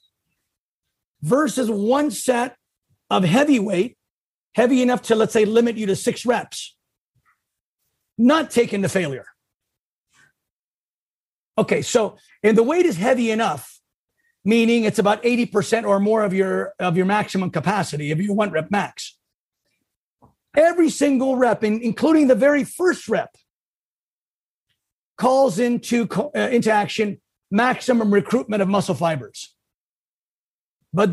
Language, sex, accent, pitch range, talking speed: English, male, American, 205-255 Hz, 120 wpm